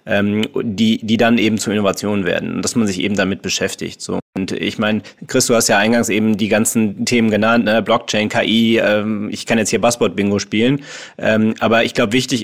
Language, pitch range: English, 110-125 Hz